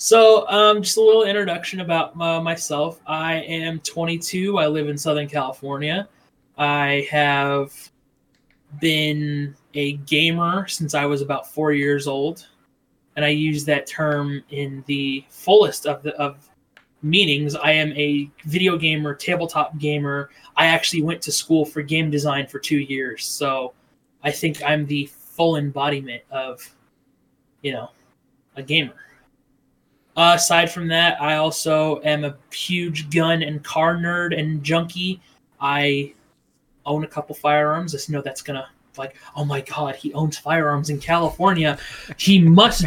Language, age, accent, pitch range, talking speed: English, 20-39, American, 145-170 Hz, 150 wpm